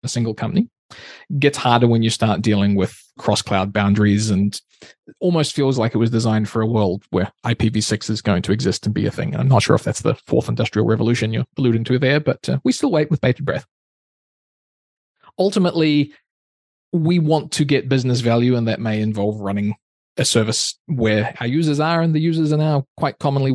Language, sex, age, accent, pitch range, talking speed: English, male, 20-39, Australian, 110-140 Hz, 205 wpm